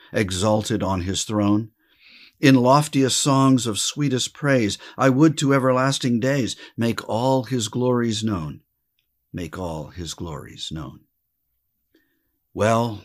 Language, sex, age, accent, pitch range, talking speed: English, male, 50-69, American, 95-125 Hz, 120 wpm